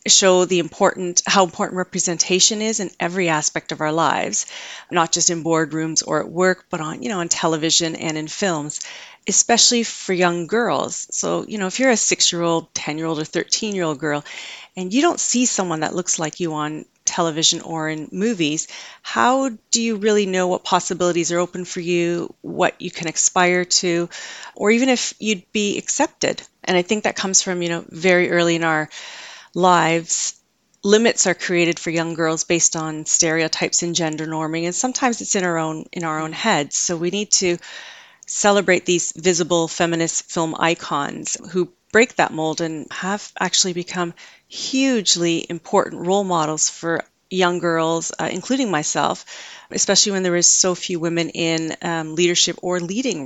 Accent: American